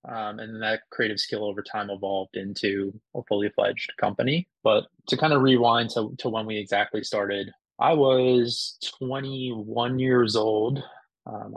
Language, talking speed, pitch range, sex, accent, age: English, 155 wpm, 105-125 Hz, male, American, 20-39